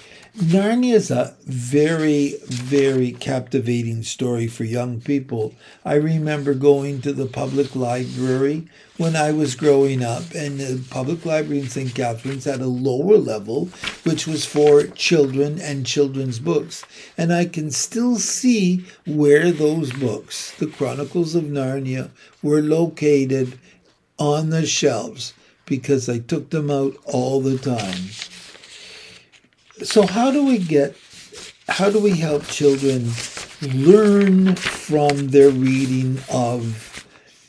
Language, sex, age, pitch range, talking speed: English, male, 60-79, 130-165 Hz, 130 wpm